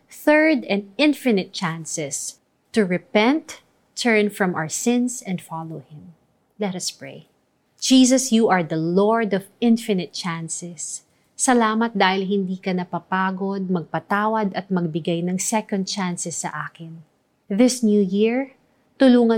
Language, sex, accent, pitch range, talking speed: Filipino, female, native, 175-225 Hz, 135 wpm